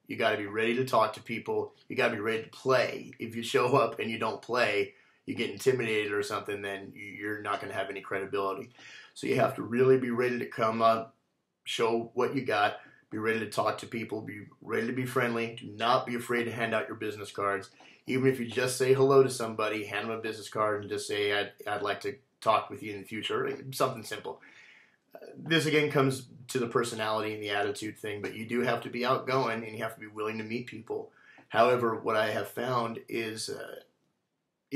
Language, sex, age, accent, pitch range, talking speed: English, male, 30-49, American, 105-130 Hz, 225 wpm